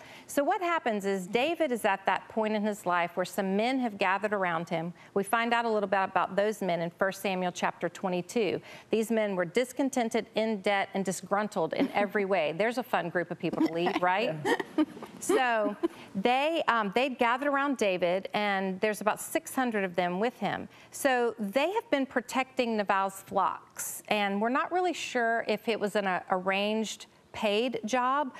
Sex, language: female, English